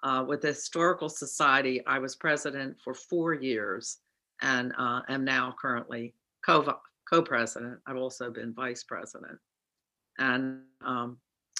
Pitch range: 120-145 Hz